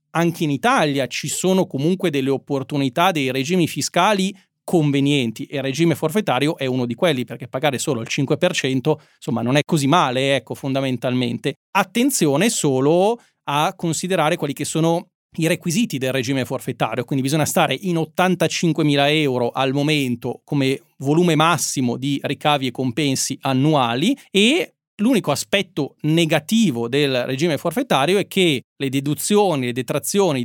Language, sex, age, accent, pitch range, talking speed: Italian, male, 30-49, native, 140-175 Hz, 145 wpm